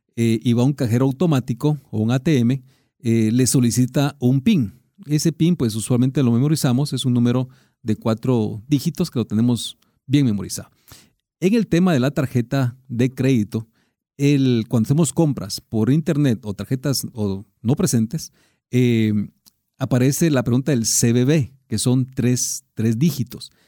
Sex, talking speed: male, 150 wpm